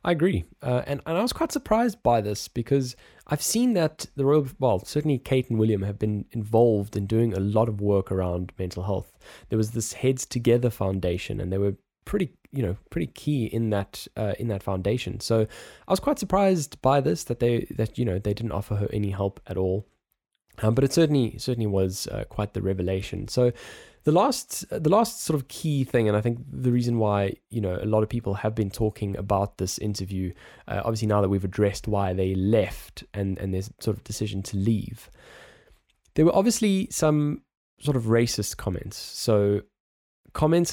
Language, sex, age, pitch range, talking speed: English, male, 10-29, 100-125 Hz, 205 wpm